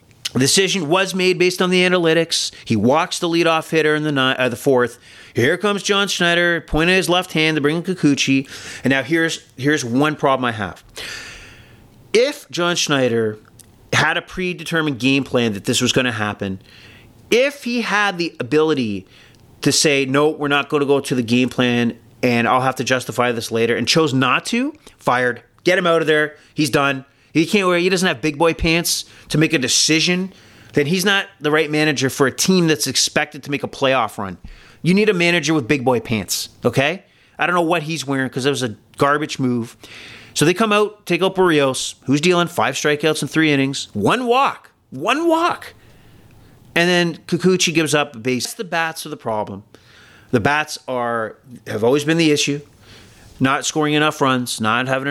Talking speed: 200 wpm